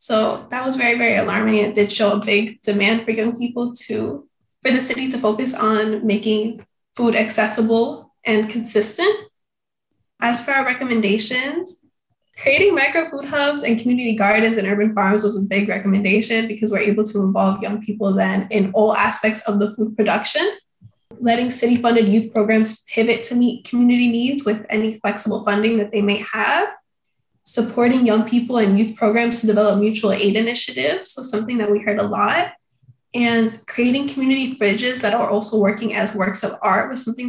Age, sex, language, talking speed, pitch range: 10-29, female, English, 175 wpm, 210-240 Hz